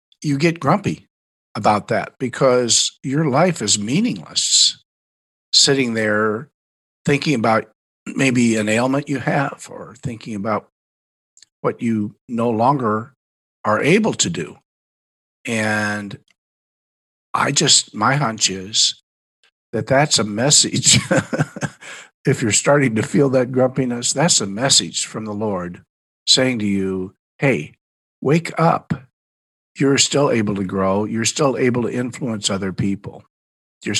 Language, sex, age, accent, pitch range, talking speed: English, male, 50-69, American, 100-140 Hz, 125 wpm